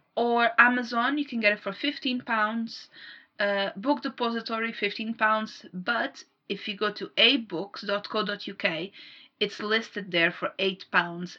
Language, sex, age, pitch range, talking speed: English, female, 30-49, 195-235 Hz, 120 wpm